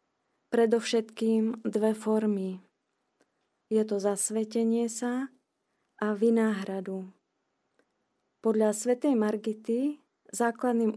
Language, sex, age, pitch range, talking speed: Slovak, female, 30-49, 210-230 Hz, 70 wpm